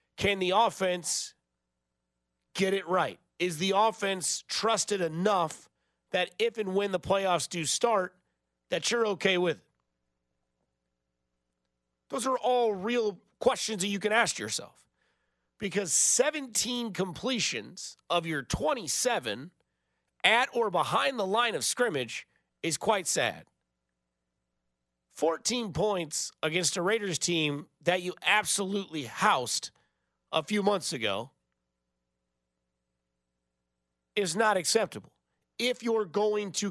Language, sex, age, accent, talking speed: English, male, 30-49, American, 115 wpm